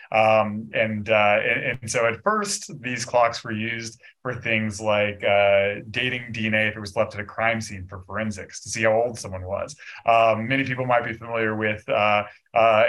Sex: male